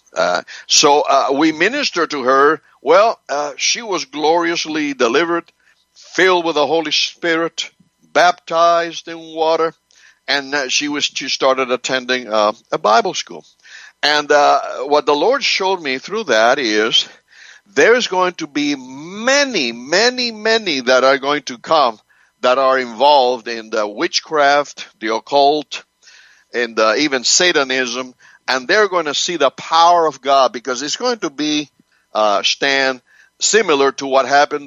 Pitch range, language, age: 130-170 Hz, English, 60-79